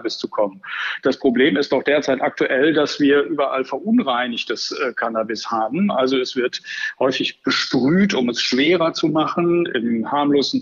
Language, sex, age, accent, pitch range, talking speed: German, male, 50-69, German, 135-200 Hz, 145 wpm